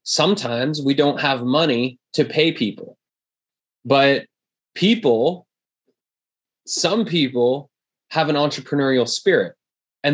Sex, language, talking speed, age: male, English, 100 wpm, 20-39